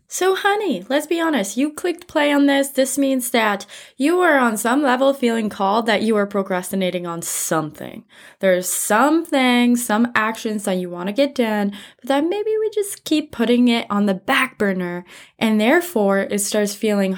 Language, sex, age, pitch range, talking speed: English, female, 20-39, 195-265 Hz, 190 wpm